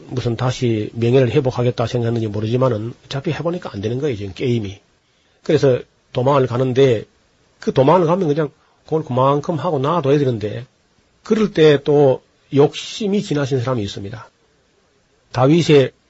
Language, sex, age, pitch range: Korean, male, 40-59, 115-150 Hz